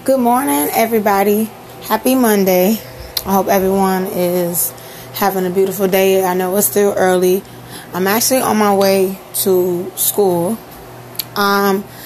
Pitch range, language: 180-210 Hz, English